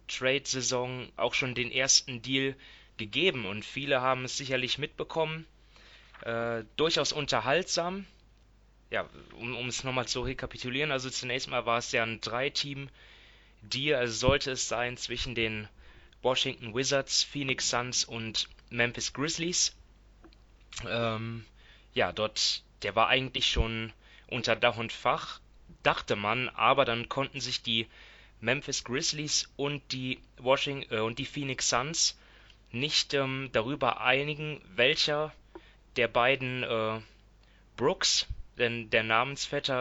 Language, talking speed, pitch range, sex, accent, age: German, 125 wpm, 115-140 Hz, male, German, 20-39